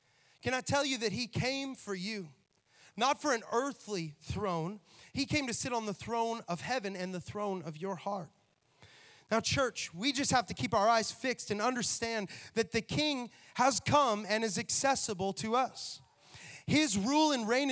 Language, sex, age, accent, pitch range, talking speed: English, male, 30-49, American, 160-225 Hz, 185 wpm